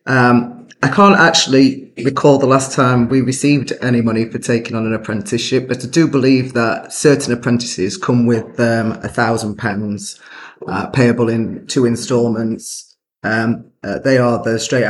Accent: British